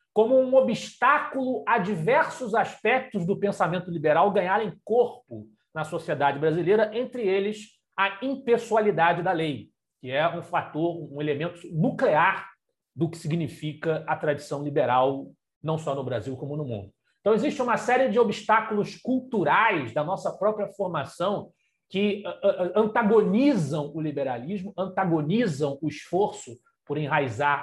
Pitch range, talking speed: 155-225 Hz, 130 wpm